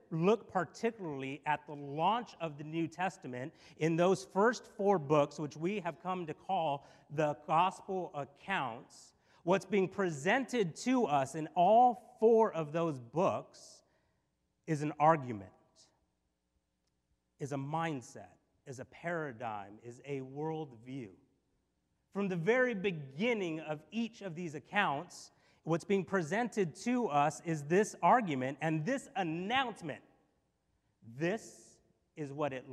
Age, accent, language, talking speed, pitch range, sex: 30-49, American, English, 130 wpm, 145-190 Hz, male